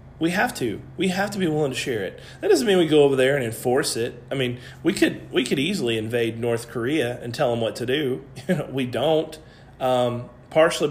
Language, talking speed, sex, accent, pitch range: English, 225 wpm, male, American, 125-175 Hz